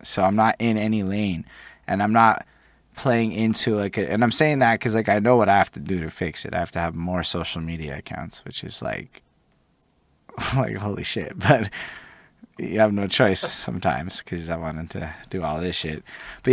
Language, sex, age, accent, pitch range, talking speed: English, male, 20-39, American, 90-110 Hz, 205 wpm